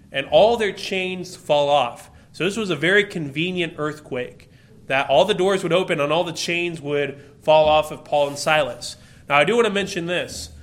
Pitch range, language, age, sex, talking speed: 135-180 Hz, English, 30-49, male, 210 wpm